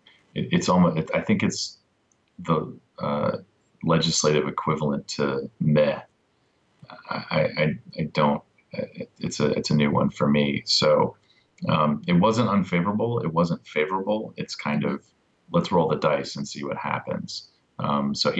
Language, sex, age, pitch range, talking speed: English, male, 30-49, 75-95 Hz, 145 wpm